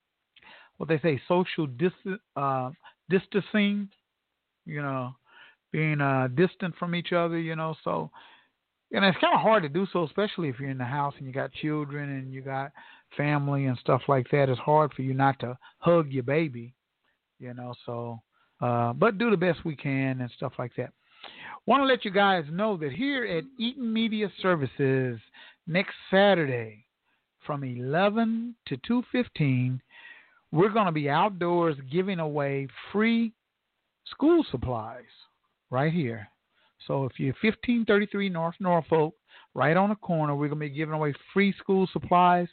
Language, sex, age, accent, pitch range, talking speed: English, male, 50-69, American, 135-190 Hz, 165 wpm